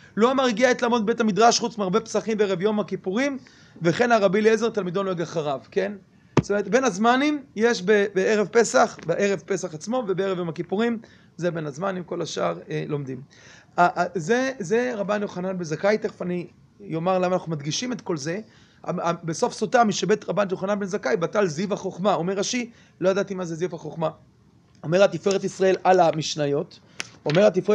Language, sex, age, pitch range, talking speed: Hebrew, male, 30-49, 175-220 Hz, 180 wpm